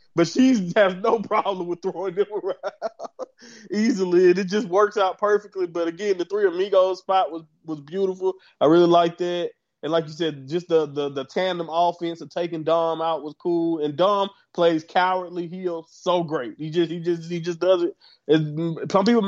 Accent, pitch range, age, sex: American, 160-200 Hz, 20-39, male